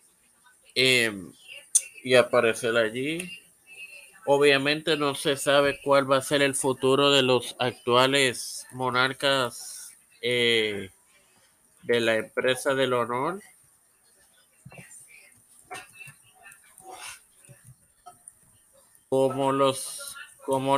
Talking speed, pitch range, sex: 80 wpm, 125-150 Hz, male